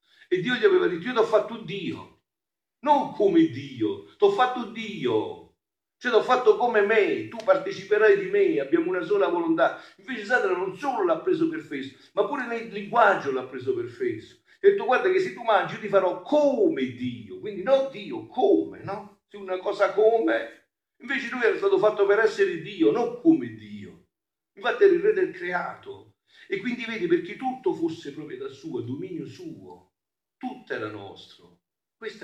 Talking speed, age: 185 wpm, 50-69